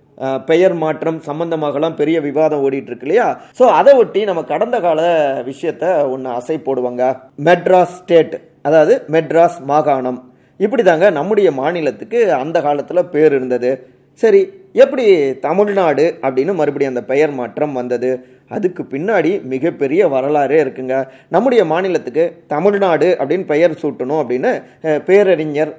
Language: Tamil